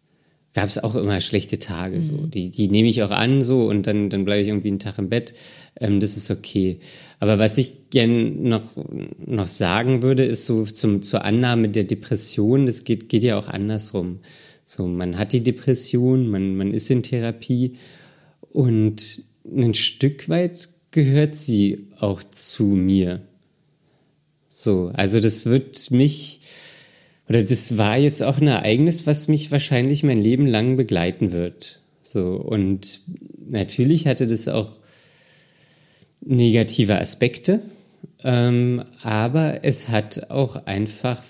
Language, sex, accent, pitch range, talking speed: German, male, German, 105-130 Hz, 150 wpm